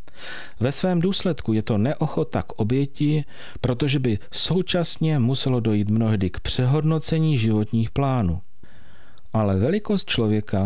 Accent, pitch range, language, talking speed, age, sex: native, 105-145 Hz, Czech, 120 wpm, 40-59, male